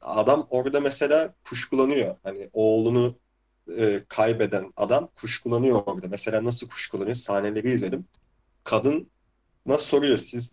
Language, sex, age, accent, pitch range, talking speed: Turkish, male, 30-49, native, 105-130 Hz, 115 wpm